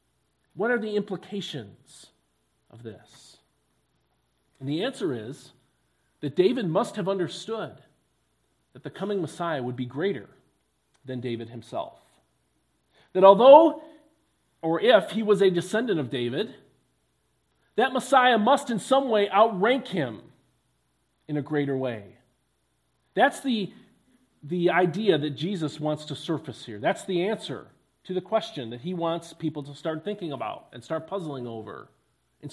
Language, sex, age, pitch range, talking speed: English, male, 40-59, 120-185 Hz, 140 wpm